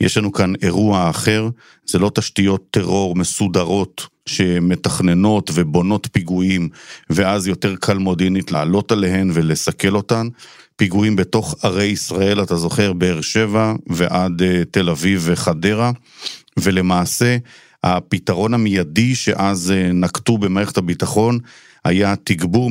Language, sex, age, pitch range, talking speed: Hebrew, male, 50-69, 90-105 Hz, 110 wpm